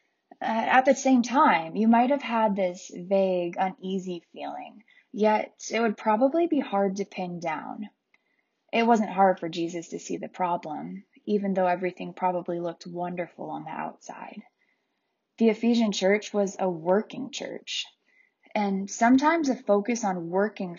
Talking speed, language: 155 wpm, English